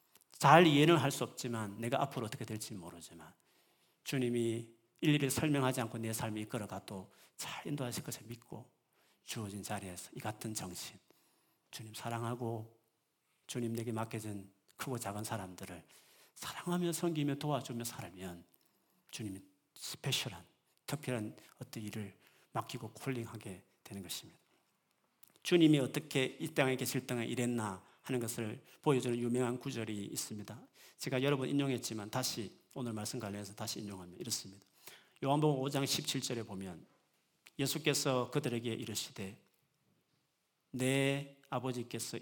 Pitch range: 110-145 Hz